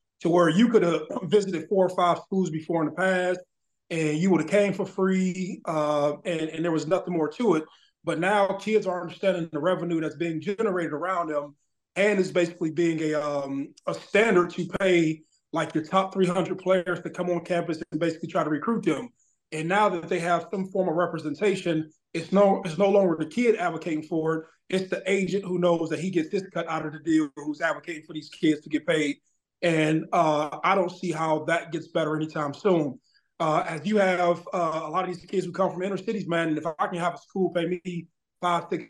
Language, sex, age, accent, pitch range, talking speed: English, male, 20-39, American, 160-185 Hz, 225 wpm